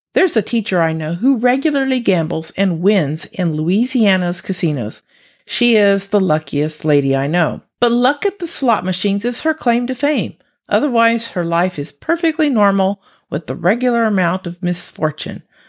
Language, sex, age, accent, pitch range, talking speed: English, female, 50-69, American, 180-245 Hz, 165 wpm